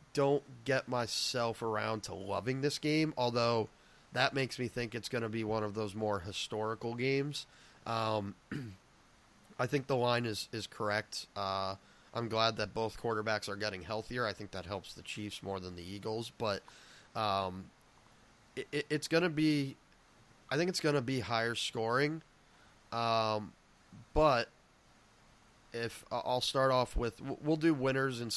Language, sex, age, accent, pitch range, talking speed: English, male, 20-39, American, 105-130 Hz, 160 wpm